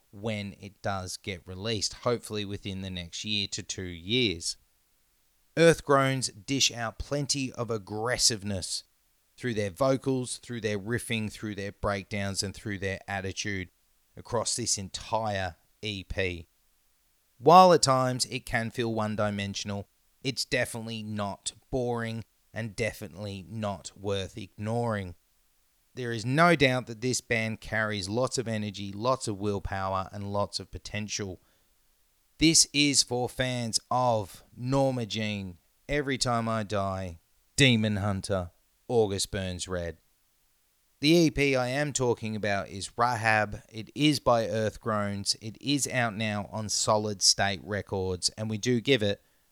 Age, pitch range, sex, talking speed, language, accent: 30-49, 95-120 Hz, male, 135 wpm, English, Australian